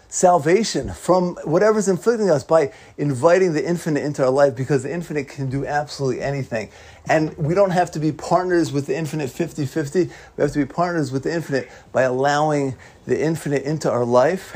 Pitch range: 145-210 Hz